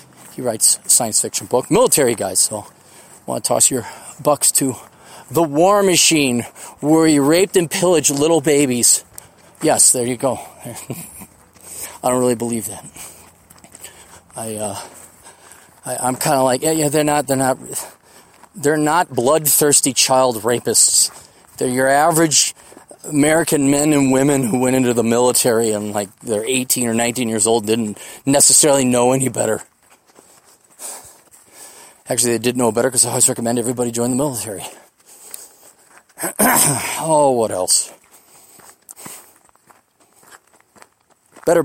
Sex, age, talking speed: male, 30-49, 135 wpm